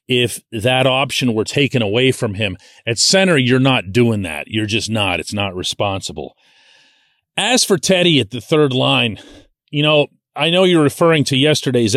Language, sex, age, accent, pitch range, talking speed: English, male, 40-59, American, 110-140 Hz, 175 wpm